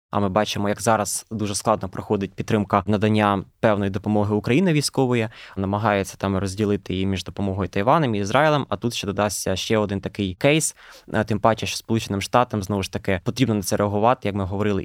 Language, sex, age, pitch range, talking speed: Ukrainian, male, 20-39, 105-120 Hz, 190 wpm